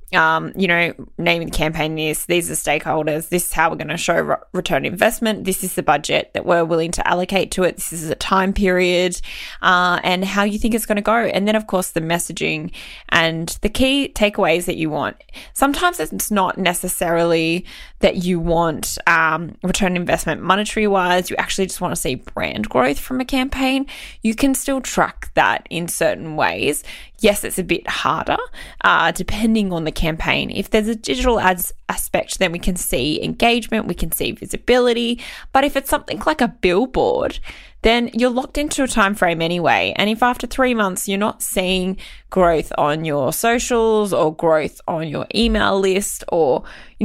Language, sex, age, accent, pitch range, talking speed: English, female, 20-39, Australian, 175-225 Hz, 190 wpm